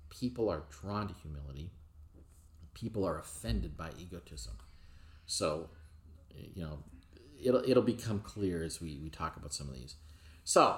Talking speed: 145 wpm